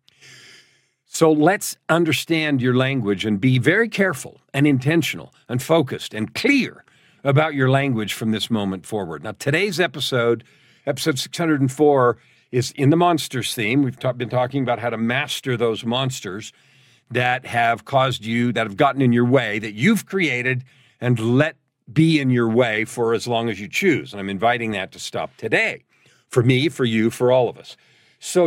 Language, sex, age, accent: English, male, 50-69, American